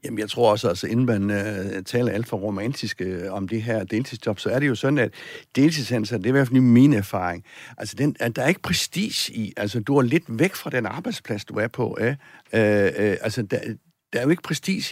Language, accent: Danish, native